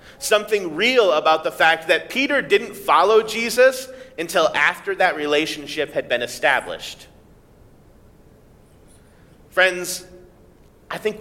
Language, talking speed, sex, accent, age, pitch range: English, 105 wpm, male, American, 30-49, 155-215 Hz